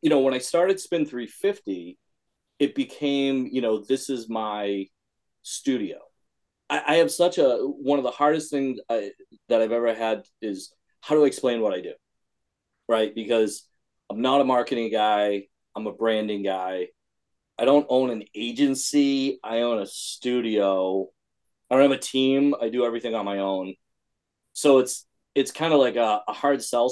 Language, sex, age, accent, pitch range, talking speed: English, male, 30-49, American, 110-140 Hz, 170 wpm